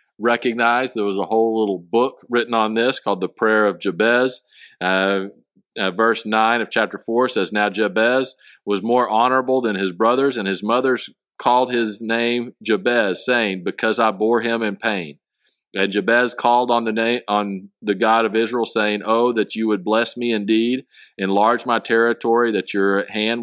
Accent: American